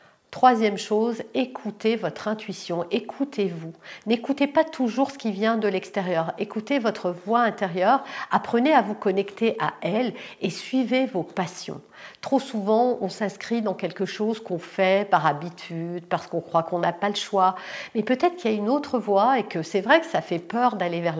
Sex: female